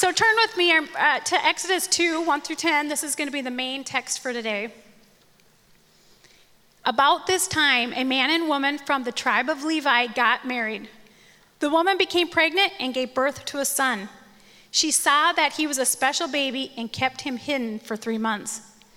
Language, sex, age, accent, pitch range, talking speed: English, female, 30-49, American, 240-300 Hz, 190 wpm